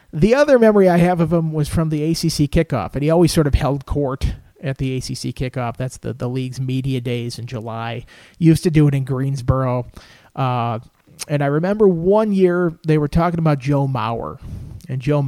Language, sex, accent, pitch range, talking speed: English, male, American, 130-160 Hz, 200 wpm